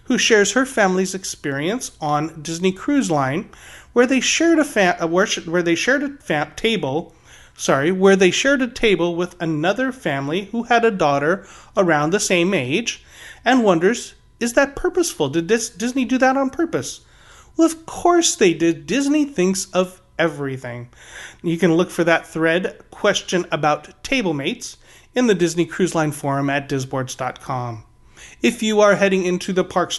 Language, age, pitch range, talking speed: English, 30-49, 155-215 Hz, 165 wpm